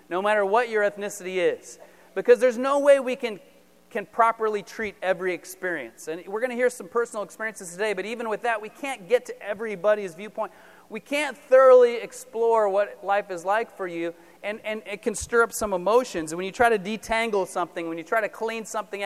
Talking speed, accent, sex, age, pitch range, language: 210 wpm, American, male, 30-49, 175-235 Hz, English